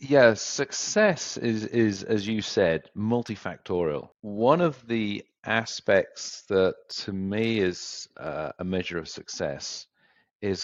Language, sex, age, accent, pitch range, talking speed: English, male, 40-59, British, 85-105 Hz, 125 wpm